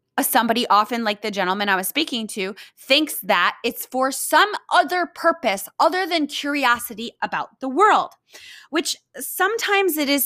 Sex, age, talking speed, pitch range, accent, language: female, 20-39, 160 wpm, 195-270 Hz, American, English